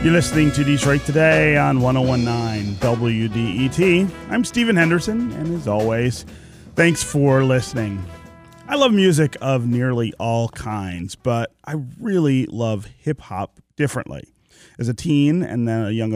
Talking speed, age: 135 wpm, 30-49